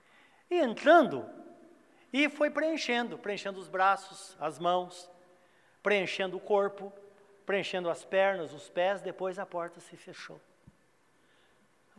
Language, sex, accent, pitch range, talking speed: Portuguese, male, Brazilian, 185-250 Hz, 120 wpm